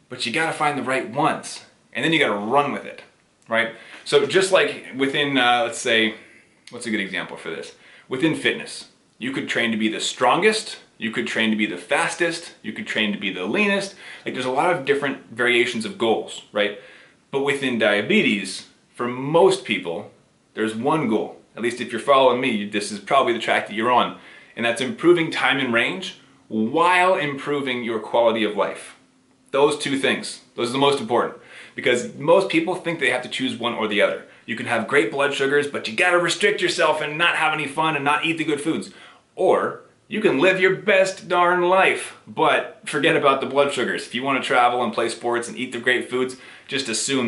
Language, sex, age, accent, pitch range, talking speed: English, male, 30-49, American, 115-170 Hz, 215 wpm